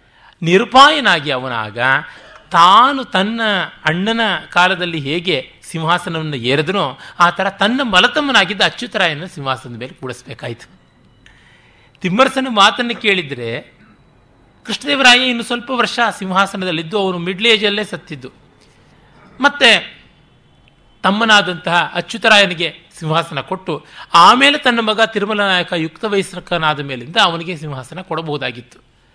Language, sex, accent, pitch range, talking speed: Kannada, male, native, 135-210 Hz, 90 wpm